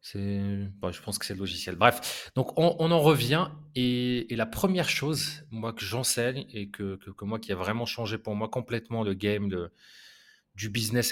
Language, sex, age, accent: French, male, 30-49, French